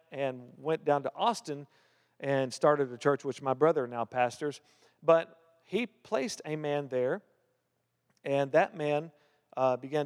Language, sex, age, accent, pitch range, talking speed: English, male, 50-69, American, 135-175 Hz, 150 wpm